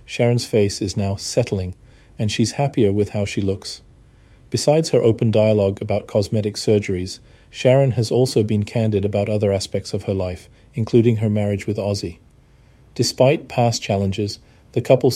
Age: 40-59